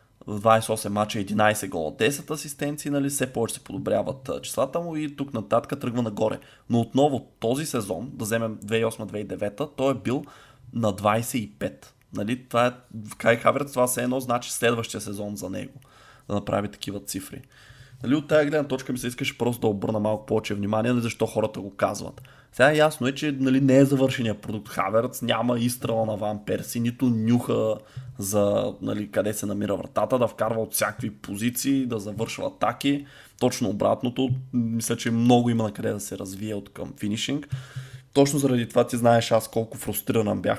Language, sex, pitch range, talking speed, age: Bulgarian, male, 110-135 Hz, 175 wpm, 20-39